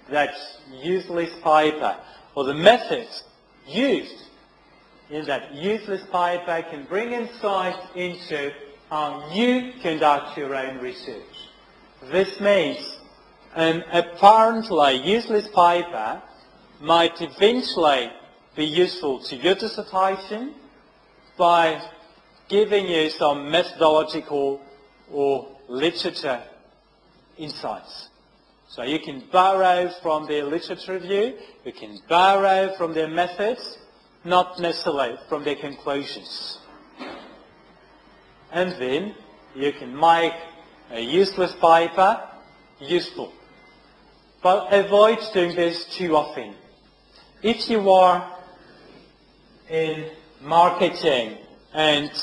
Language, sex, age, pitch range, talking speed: French, male, 40-59, 150-190 Hz, 95 wpm